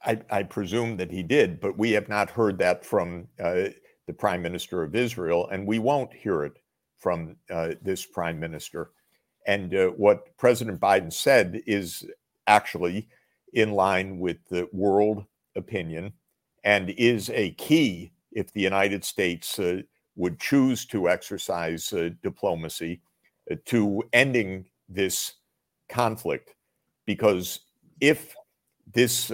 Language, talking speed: English, 135 wpm